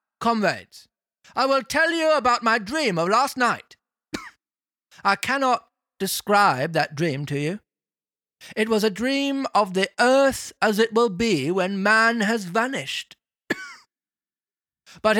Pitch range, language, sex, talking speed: 220-280 Hz, English, male, 135 wpm